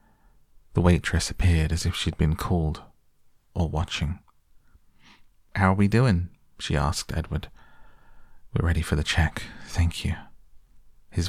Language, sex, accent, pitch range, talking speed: English, male, British, 75-90 Hz, 135 wpm